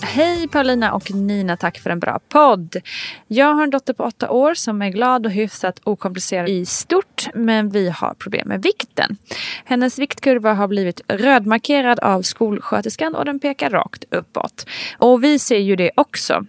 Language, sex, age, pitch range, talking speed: Swedish, female, 20-39, 190-260 Hz, 175 wpm